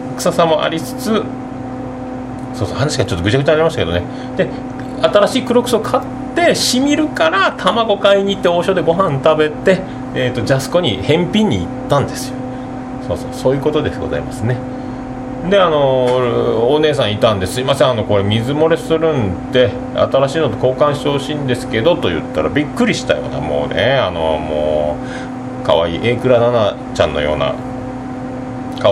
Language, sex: Japanese, male